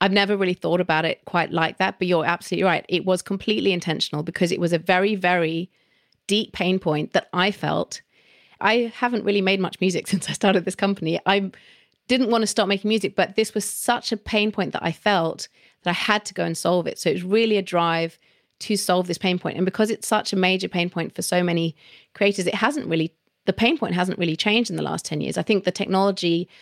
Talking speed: 235 wpm